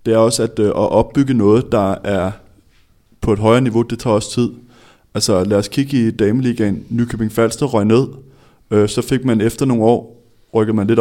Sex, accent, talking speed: male, native, 205 wpm